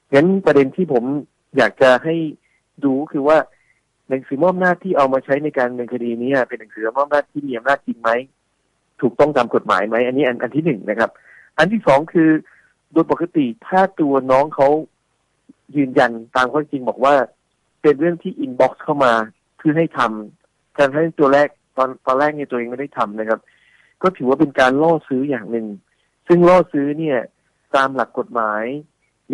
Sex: male